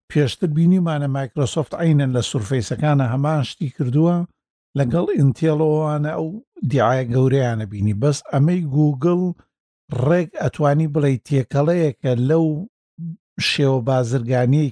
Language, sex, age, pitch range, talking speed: Arabic, male, 60-79, 130-155 Hz, 120 wpm